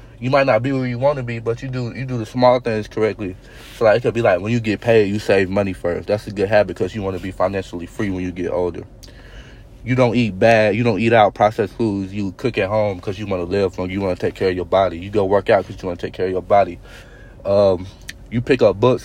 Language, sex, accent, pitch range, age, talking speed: English, male, American, 95-115 Hz, 30-49, 290 wpm